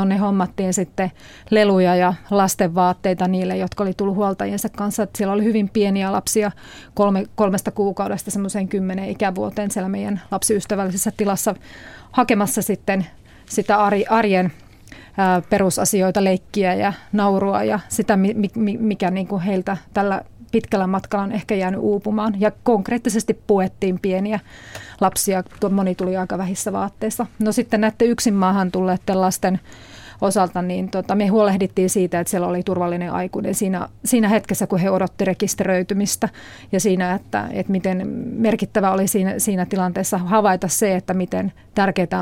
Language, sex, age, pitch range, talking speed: Finnish, female, 30-49, 185-210 Hz, 140 wpm